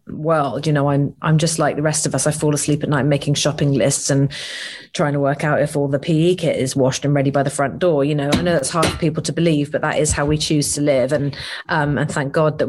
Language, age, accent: English, 30-49, British